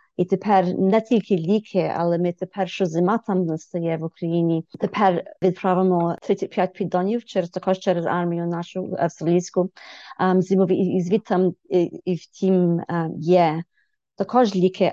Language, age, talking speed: Ukrainian, 30-49, 135 wpm